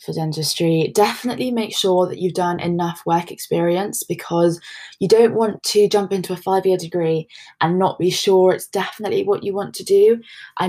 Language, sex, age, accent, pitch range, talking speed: English, female, 20-39, British, 170-205 Hz, 185 wpm